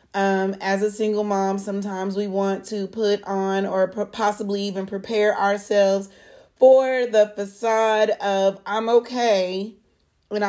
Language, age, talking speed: English, 30-49, 130 wpm